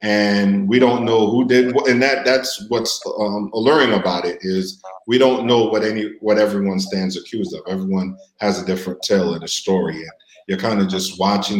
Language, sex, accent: English, male, American